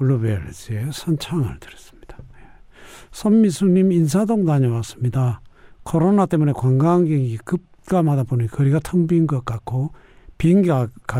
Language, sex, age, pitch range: Korean, male, 60-79, 115-165 Hz